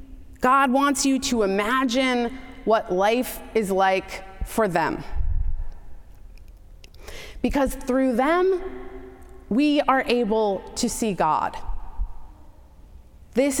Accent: American